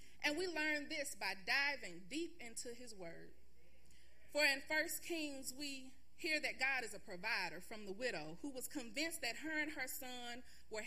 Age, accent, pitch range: 30-49, American, 225-310 Hz